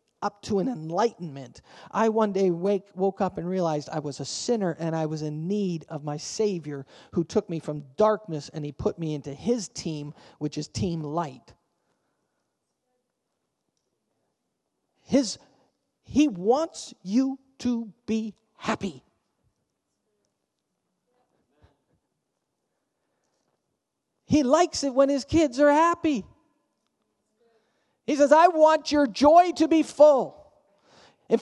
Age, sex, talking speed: 40-59, male, 125 wpm